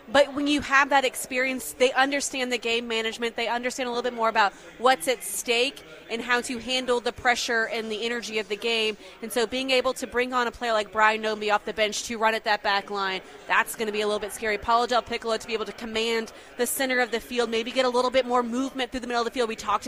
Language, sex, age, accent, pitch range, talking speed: English, female, 30-49, American, 225-255 Hz, 270 wpm